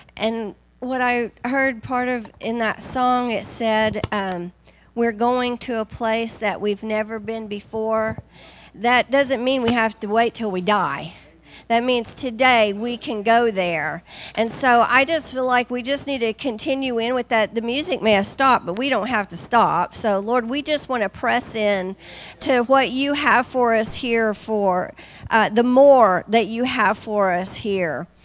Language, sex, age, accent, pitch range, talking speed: English, female, 50-69, American, 205-250 Hz, 190 wpm